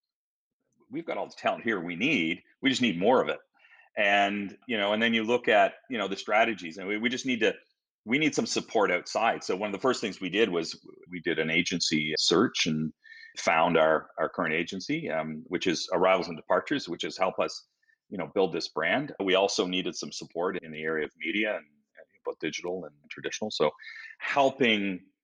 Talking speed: 210 wpm